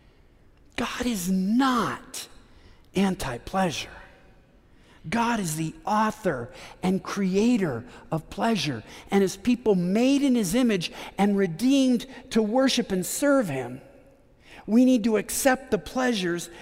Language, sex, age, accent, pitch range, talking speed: English, male, 50-69, American, 195-265 Hz, 115 wpm